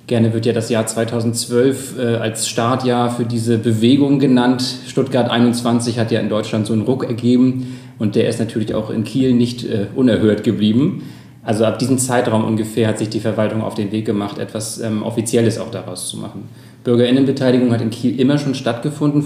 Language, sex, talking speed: German, male, 190 wpm